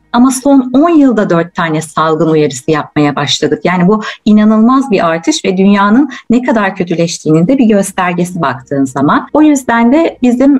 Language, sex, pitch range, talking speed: Turkish, female, 165-235 Hz, 165 wpm